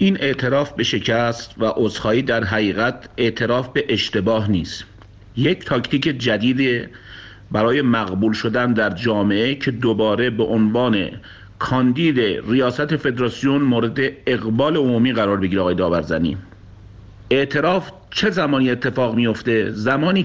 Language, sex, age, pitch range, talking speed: Persian, male, 50-69, 105-145 Hz, 120 wpm